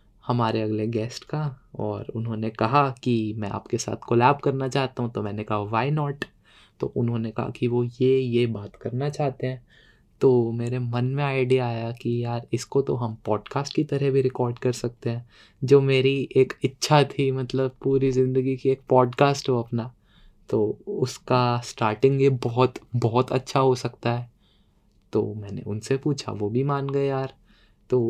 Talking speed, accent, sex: 175 wpm, native, male